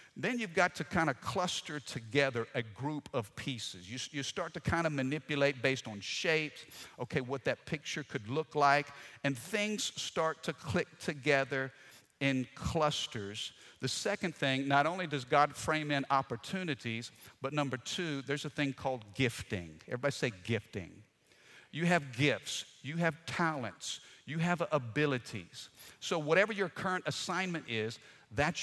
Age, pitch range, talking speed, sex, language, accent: 50-69, 125-165 Hz, 155 wpm, male, English, American